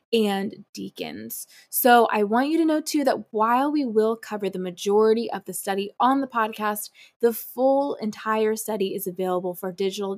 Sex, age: female, 20-39